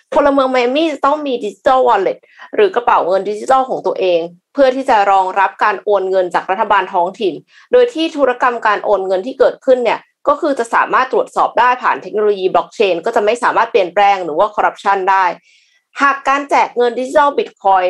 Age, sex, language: 20-39, female, Thai